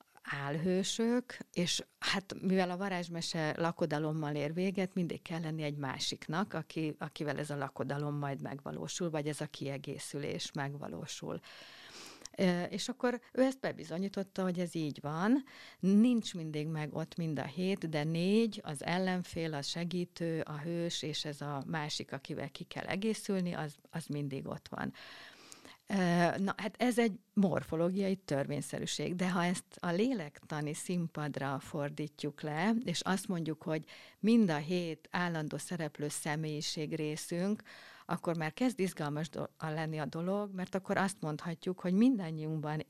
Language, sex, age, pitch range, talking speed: Hungarian, female, 50-69, 150-185 Hz, 140 wpm